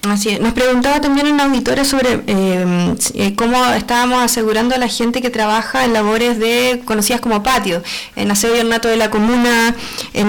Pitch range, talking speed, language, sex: 215-250 Hz, 175 wpm, Spanish, female